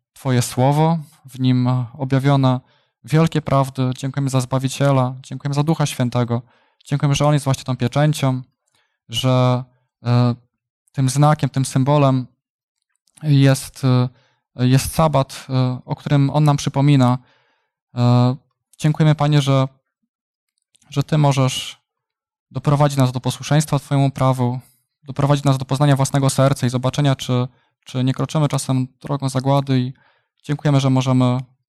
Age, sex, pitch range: 20-39, male, 125-140 Hz